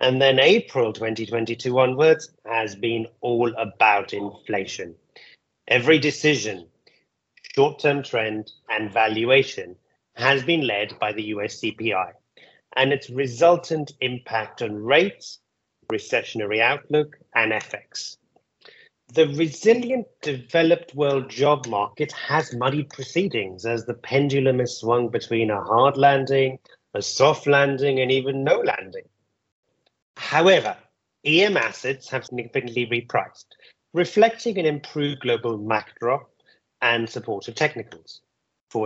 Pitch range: 110-145 Hz